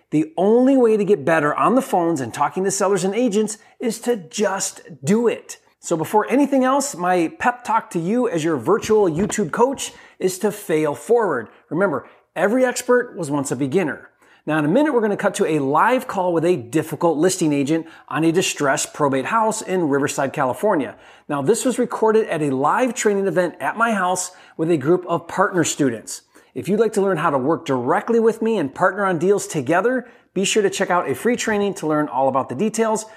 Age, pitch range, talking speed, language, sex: 30-49, 155-225 Hz, 210 wpm, English, male